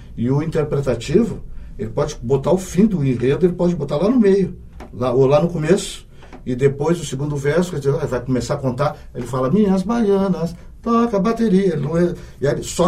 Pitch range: 125-165 Hz